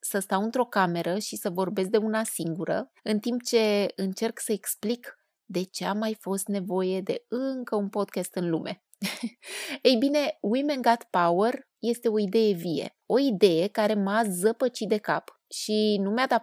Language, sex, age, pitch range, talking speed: Romanian, female, 20-39, 180-245 Hz, 175 wpm